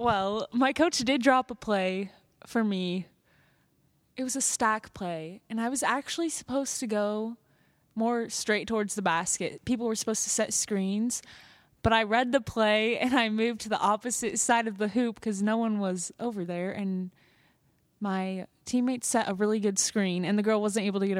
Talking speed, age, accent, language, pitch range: 190 wpm, 20-39, American, English, 190-230 Hz